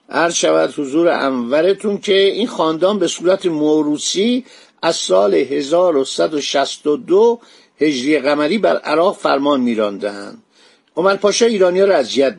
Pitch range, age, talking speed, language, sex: 145-195 Hz, 50-69, 115 wpm, Persian, male